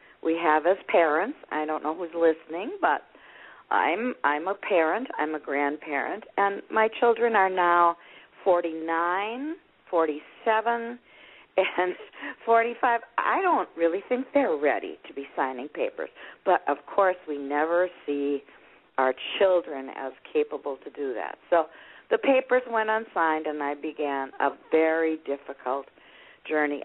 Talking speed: 135 wpm